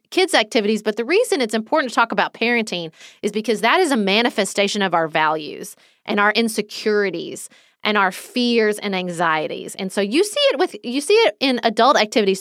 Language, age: English, 30-49